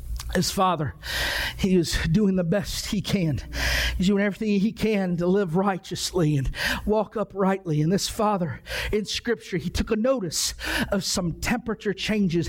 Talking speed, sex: 160 wpm, male